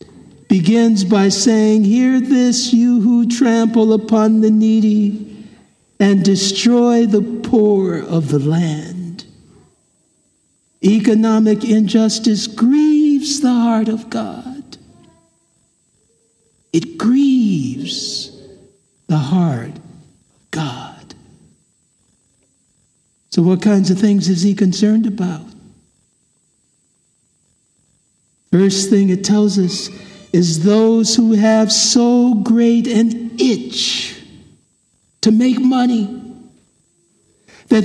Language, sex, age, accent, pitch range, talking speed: English, male, 60-79, American, 200-245 Hz, 90 wpm